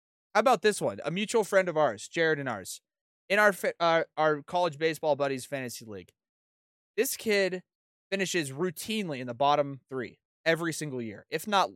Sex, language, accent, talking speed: male, English, American, 175 wpm